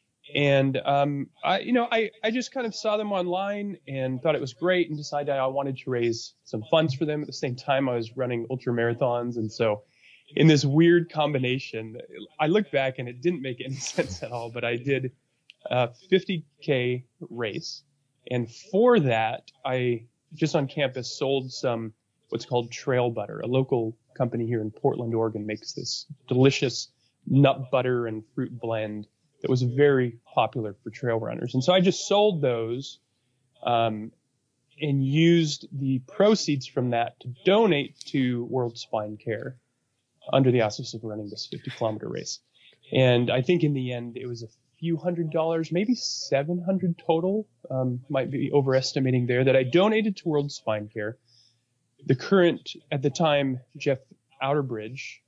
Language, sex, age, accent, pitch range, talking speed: English, male, 20-39, American, 120-150 Hz, 170 wpm